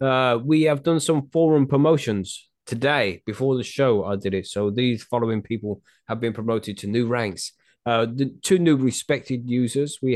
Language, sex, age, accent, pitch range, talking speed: English, male, 20-39, British, 105-130 Hz, 175 wpm